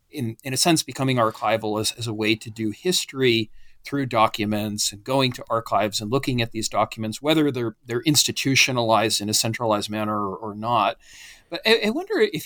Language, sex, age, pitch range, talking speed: English, male, 40-59, 115-145 Hz, 195 wpm